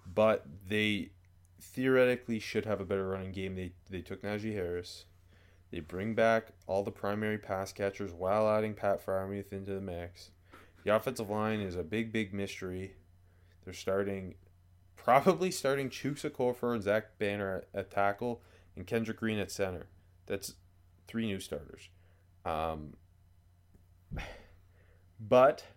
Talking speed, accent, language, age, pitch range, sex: 135 wpm, American, English, 20-39, 90-110 Hz, male